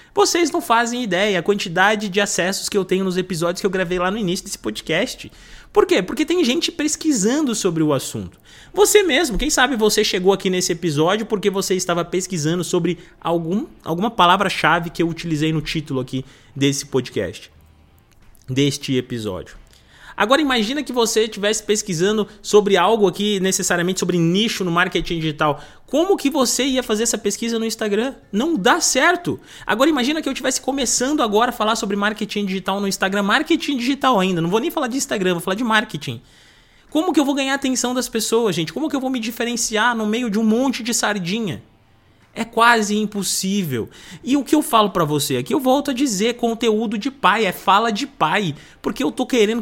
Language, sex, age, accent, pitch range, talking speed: Portuguese, male, 20-39, Brazilian, 185-245 Hz, 190 wpm